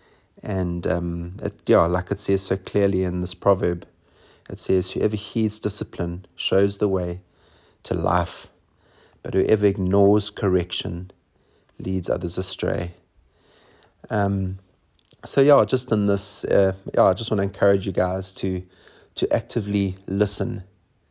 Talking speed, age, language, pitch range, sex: 135 wpm, 30-49, English, 90-105 Hz, male